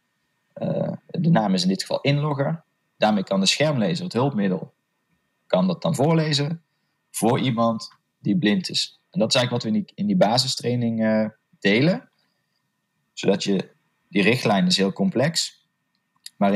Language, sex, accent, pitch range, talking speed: Dutch, male, Dutch, 115-185 Hz, 160 wpm